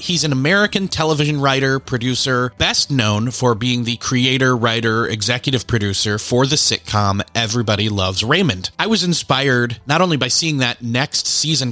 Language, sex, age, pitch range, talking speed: English, male, 30-49, 120-150 Hz, 160 wpm